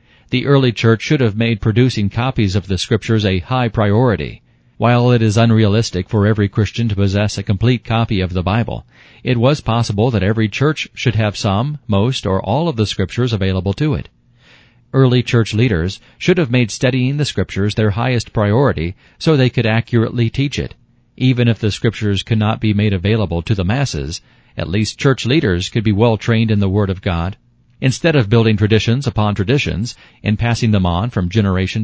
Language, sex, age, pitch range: English, male, 40-59, 100-125 Hz